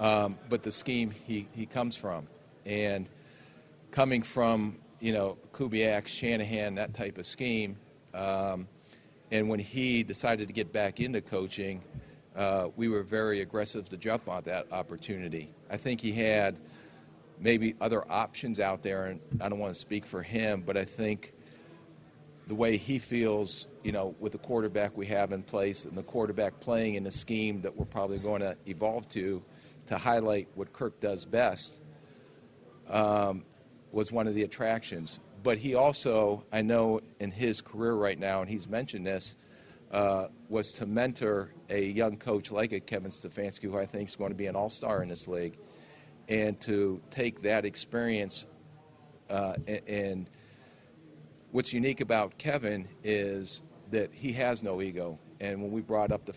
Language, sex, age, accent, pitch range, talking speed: English, male, 40-59, American, 100-115 Hz, 170 wpm